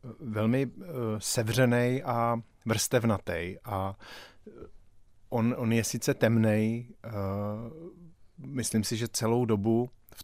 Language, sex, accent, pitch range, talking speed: Czech, male, native, 105-120 Hz, 105 wpm